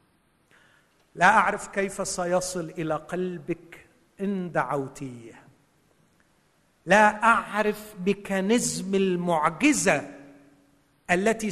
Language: Arabic